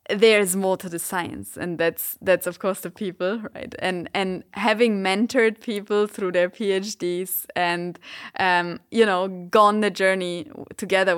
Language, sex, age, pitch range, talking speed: English, female, 20-39, 180-225 Hz, 160 wpm